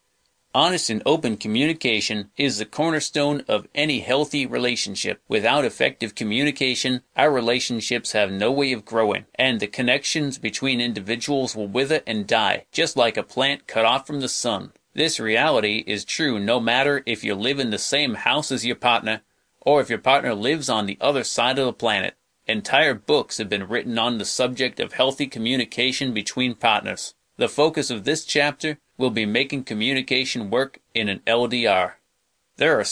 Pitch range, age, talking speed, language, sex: 110-135 Hz, 30-49, 175 wpm, English, male